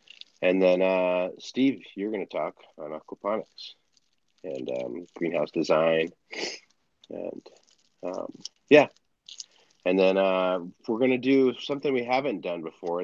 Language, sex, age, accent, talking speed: English, male, 30-49, American, 135 wpm